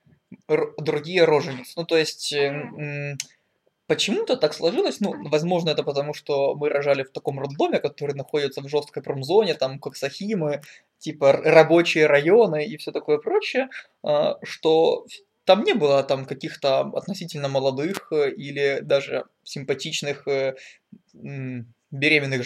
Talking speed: 120 wpm